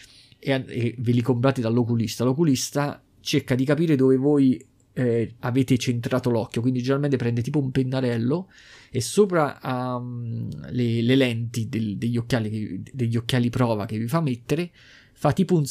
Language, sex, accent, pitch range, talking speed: Italian, male, native, 120-140 Hz, 140 wpm